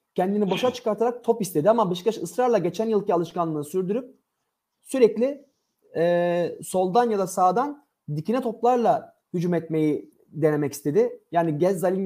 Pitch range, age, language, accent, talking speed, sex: 170-230 Hz, 30-49, Turkish, native, 135 wpm, male